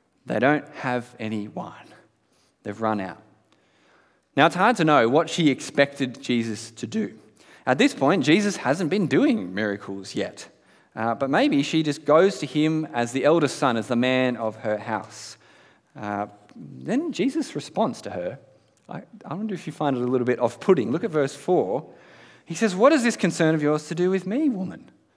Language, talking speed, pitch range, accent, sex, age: English, 190 wpm, 115-175 Hz, Australian, male, 30-49